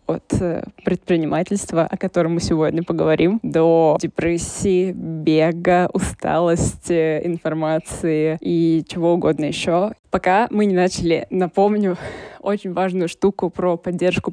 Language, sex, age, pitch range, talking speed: Russian, female, 20-39, 160-185 Hz, 110 wpm